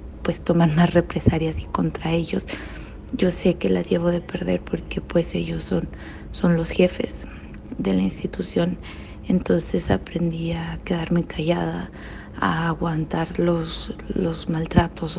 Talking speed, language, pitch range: 135 wpm, Spanish, 165-185 Hz